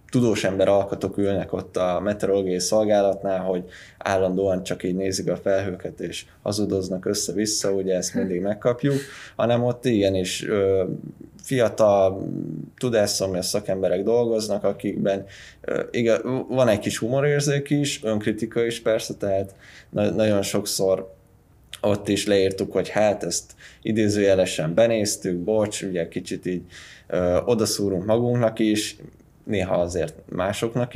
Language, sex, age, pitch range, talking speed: Hungarian, male, 20-39, 95-110 Hz, 120 wpm